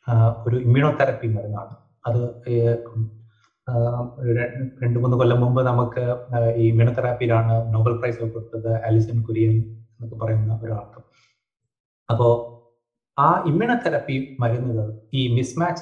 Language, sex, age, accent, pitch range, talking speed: Malayalam, male, 30-49, native, 115-140 Hz, 105 wpm